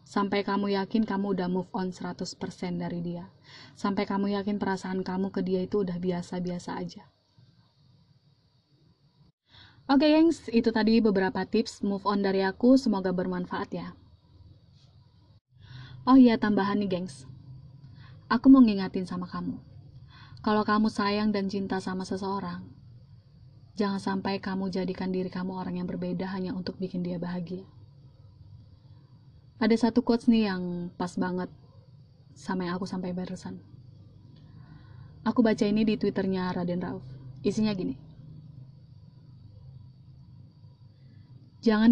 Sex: female